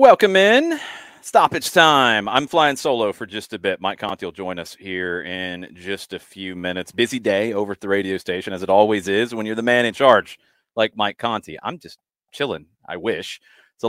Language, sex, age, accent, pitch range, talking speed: English, male, 30-49, American, 95-120 Hz, 205 wpm